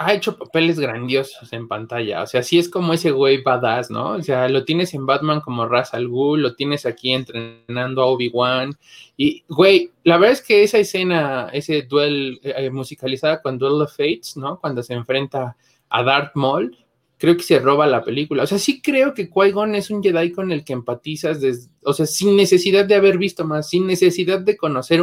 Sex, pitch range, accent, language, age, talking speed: male, 130-175 Hz, Mexican, Spanish, 20-39, 205 wpm